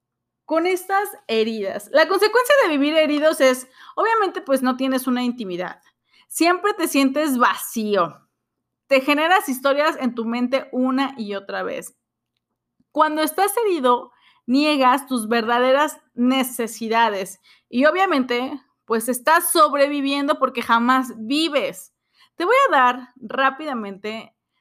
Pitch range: 215-280 Hz